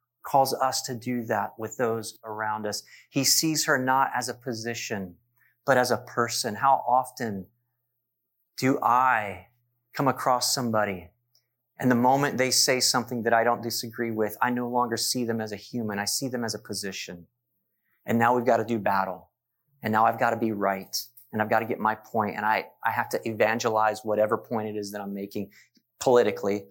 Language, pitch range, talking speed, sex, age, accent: English, 105-125 Hz, 195 wpm, male, 30-49, American